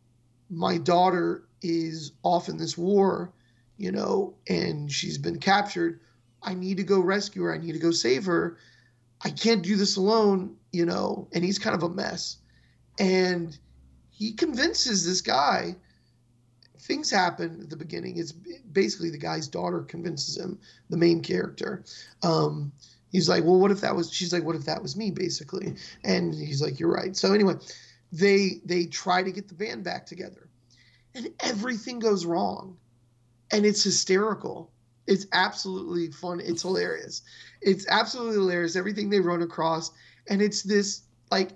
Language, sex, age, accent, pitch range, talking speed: English, male, 30-49, American, 160-190 Hz, 165 wpm